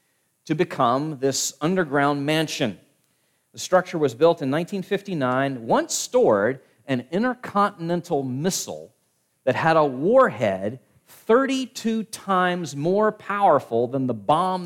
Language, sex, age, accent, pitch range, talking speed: English, male, 40-59, American, 130-215 Hz, 110 wpm